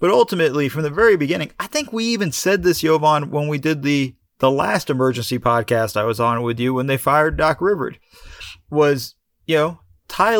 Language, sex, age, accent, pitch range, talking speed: English, male, 30-49, American, 120-165 Hz, 200 wpm